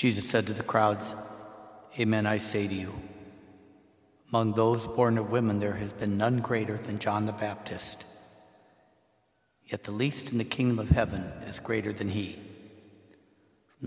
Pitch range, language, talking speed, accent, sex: 105-115 Hz, English, 160 wpm, American, male